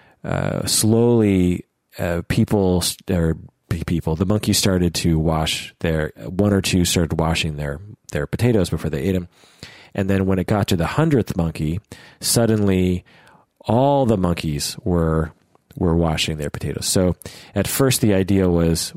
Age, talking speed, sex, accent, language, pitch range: 40-59, 150 wpm, male, American, English, 85-105 Hz